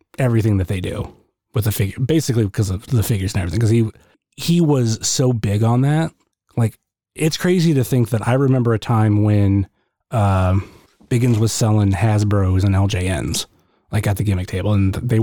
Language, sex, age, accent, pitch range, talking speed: English, male, 30-49, American, 105-135 Hz, 190 wpm